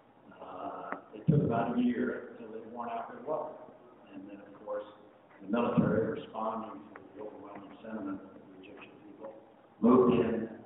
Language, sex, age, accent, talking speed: English, male, 50-69, American, 165 wpm